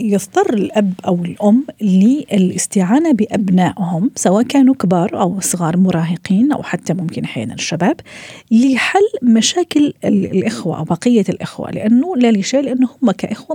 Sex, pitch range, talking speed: female, 185-255 Hz, 130 wpm